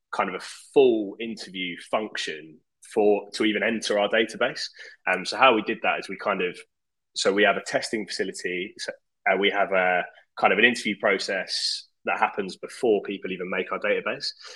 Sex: male